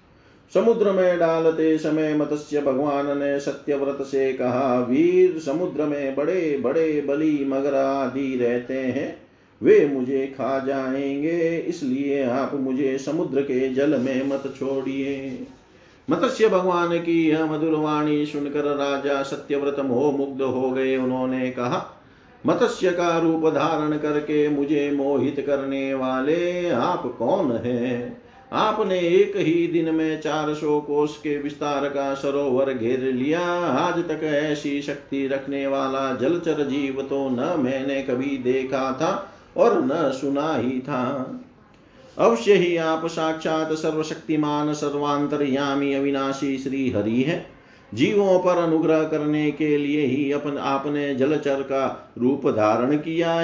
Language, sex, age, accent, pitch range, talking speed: Hindi, male, 50-69, native, 135-160 Hz, 130 wpm